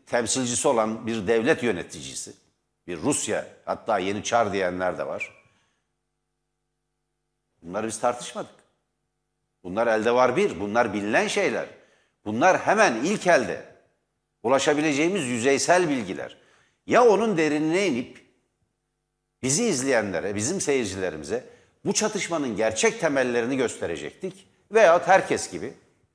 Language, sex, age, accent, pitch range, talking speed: Turkish, male, 60-79, native, 115-170 Hz, 105 wpm